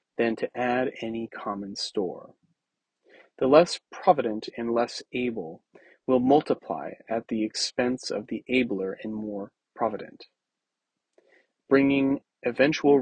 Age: 30-49